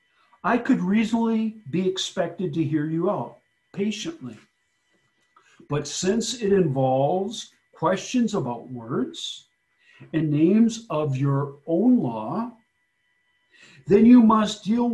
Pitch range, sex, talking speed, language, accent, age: 160-230 Hz, male, 110 wpm, English, American, 50-69